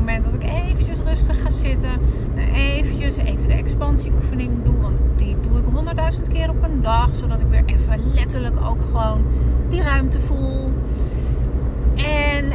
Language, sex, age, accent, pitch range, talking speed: Dutch, female, 30-49, Dutch, 65-70 Hz, 145 wpm